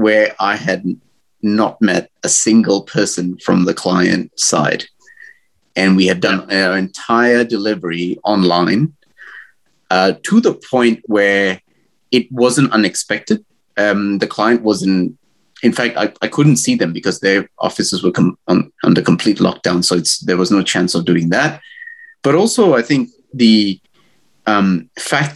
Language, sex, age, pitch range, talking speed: English, male, 30-49, 95-130 Hz, 145 wpm